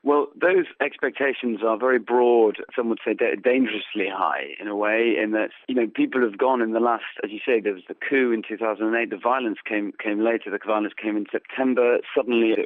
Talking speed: 210 wpm